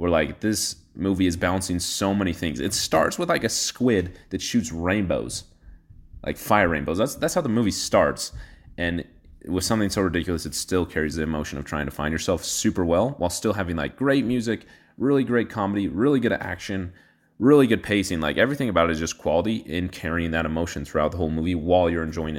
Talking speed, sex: 205 wpm, male